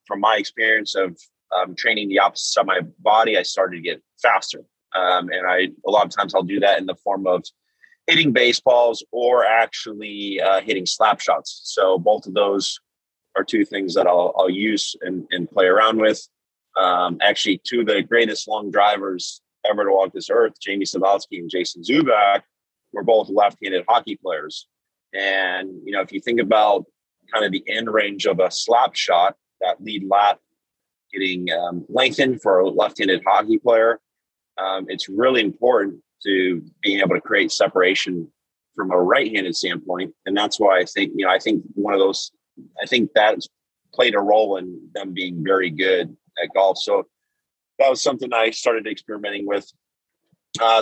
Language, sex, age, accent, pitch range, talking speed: English, male, 30-49, American, 95-120 Hz, 180 wpm